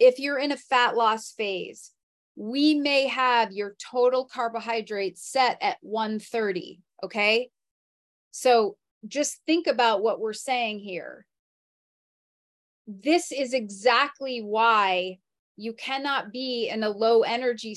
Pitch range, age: 225-280 Hz, 30-49